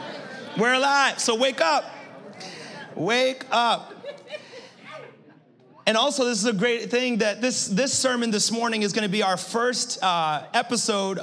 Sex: male